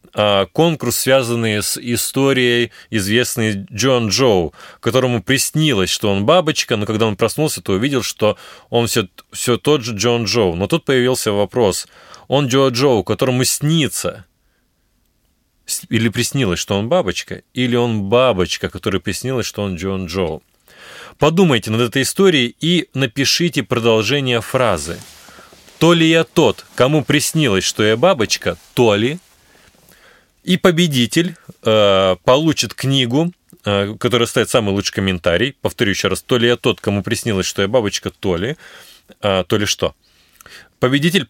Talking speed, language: 145 wpm, Russian